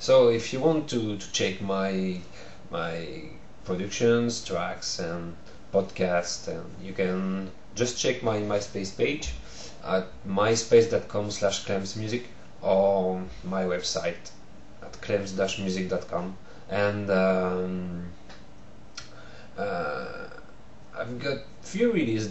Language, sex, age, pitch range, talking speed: English, male, 30-49, 95-105 Hz, 95 wpm